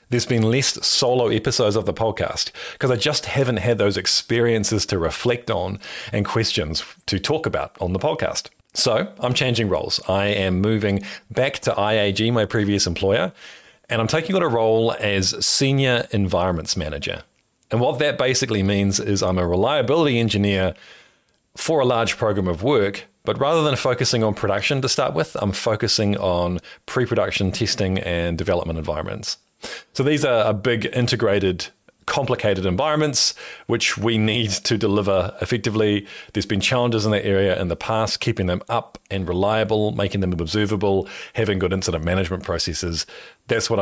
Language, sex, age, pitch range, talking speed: English, male, 30-49, 95-120 Hz, 165 wpm